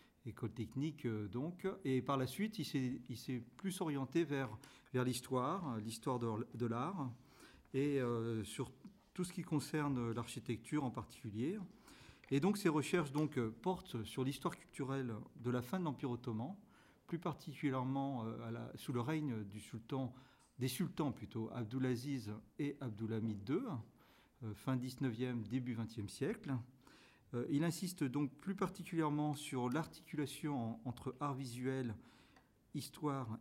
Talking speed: 140 wpm